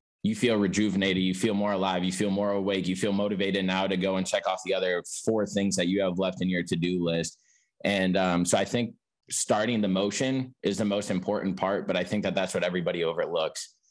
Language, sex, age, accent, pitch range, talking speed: English, male, 20-39, American, 90-105 Hz, 235 wpm